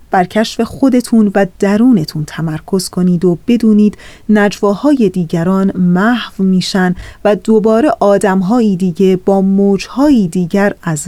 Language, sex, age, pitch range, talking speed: Persian, female, 30-49, 180-230 Hz, 115 wpm